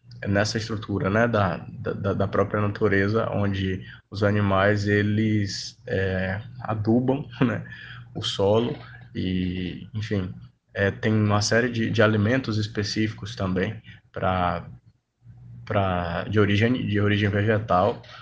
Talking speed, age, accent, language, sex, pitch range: 100 wpm, 20-39, Brazilian, Portuguese, male, 100-110 Hz